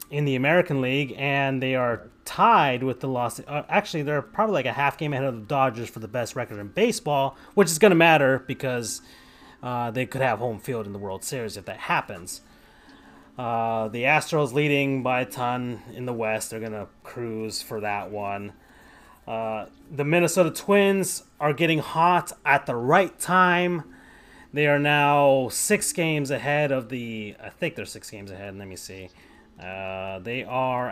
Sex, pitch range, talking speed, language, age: male, 115-150 Hz, 180 wpm, English, 30-49